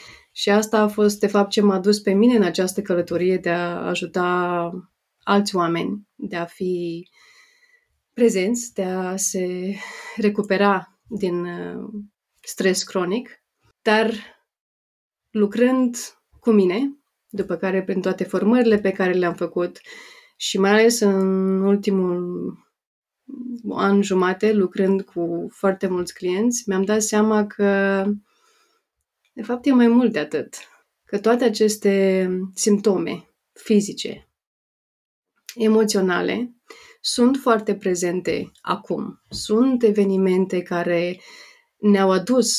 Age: 30-49